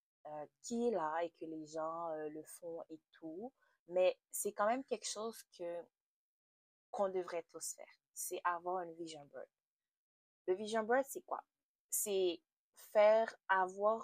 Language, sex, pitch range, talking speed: French, female, 165-215 Hz, 160 wpm